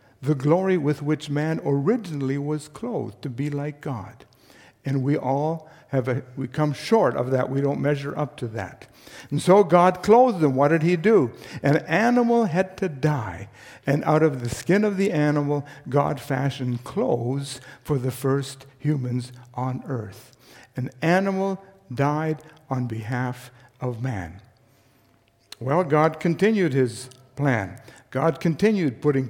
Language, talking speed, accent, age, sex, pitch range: German, 150 wpm, American, 60-79, male, 125-155 Hz